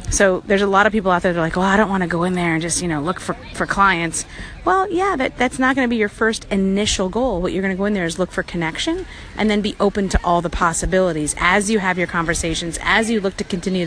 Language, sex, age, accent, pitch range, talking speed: English, female, 30-49, American, 170-220 Hz, 290 wpm